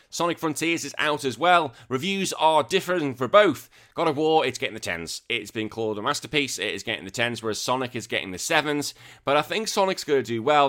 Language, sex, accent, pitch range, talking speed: English, male, British, 105-135 Hz, 235 wpm